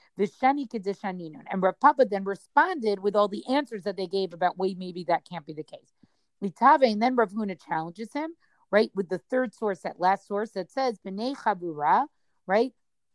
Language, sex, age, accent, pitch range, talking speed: English, female, 40-59, American, 195-245 Hz, 165 wpm